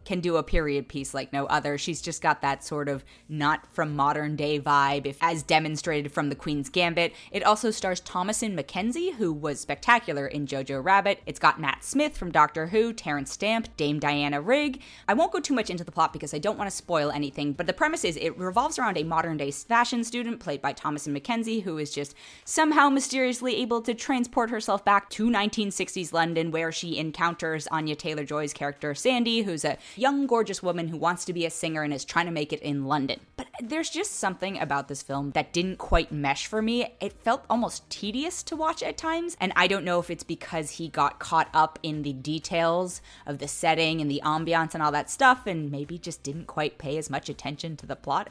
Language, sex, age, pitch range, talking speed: English, female, 20-39, 150-225 Hz, 210 wpm